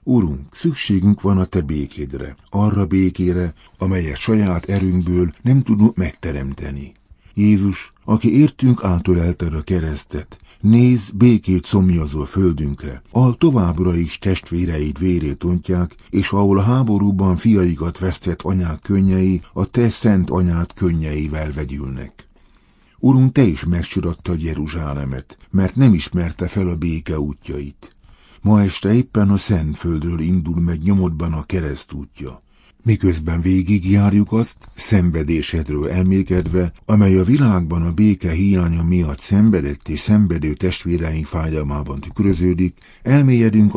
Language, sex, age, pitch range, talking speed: Hungarian, male, 60-79, 80-100 Hz, 115 wpm